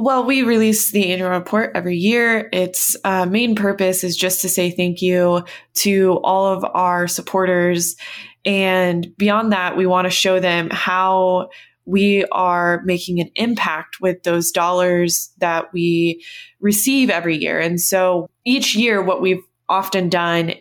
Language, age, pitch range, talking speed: English, 20-39, 170-190 Hz, 155 wpm